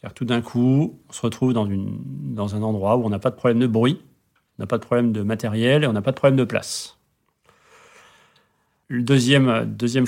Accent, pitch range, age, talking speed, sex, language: French, 110-130 Hz, 40-59, 225 wpm, male, French